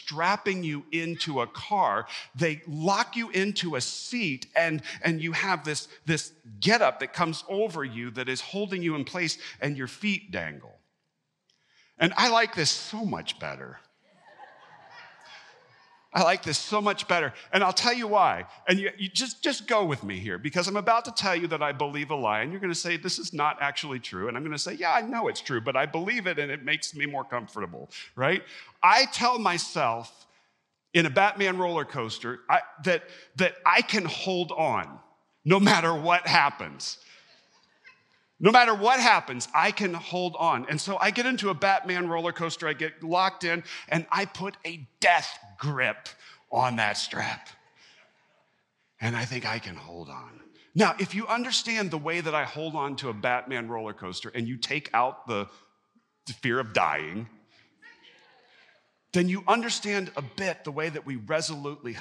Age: 50-69